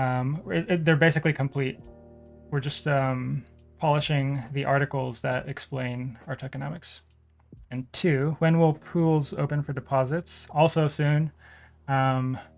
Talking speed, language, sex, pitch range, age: 120 wpm, English, male, 125-150 Hz, 20-39